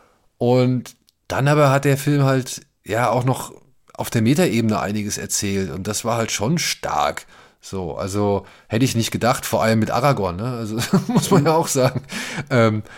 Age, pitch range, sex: 30-49, 105-135 Hz, male